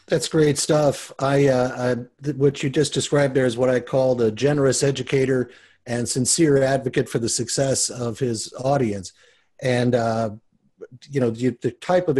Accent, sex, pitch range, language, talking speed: American, male, 115-145 Hz, English, 175 wpm